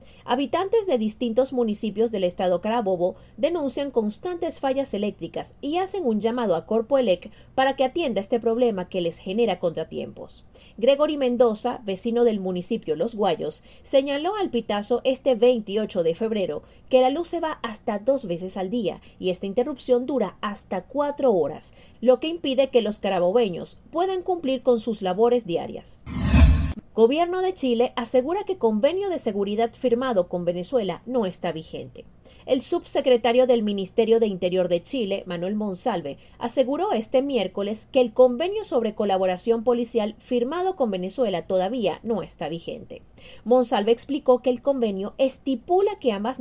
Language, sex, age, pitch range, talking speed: Spanish, female, 30-49, 200-270 Hz, 150 wpm